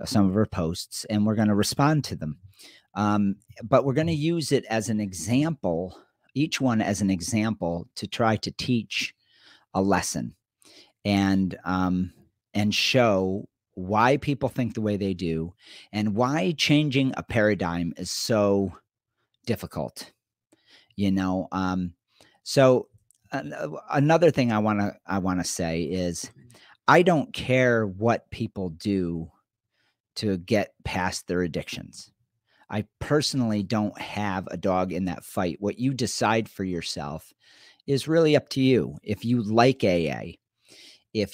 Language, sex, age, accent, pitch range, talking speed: English, male, 40-59, American, 95-125 Hz, 145 wpm